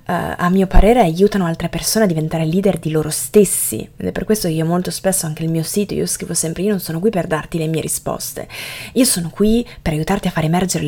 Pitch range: 170-225 Hz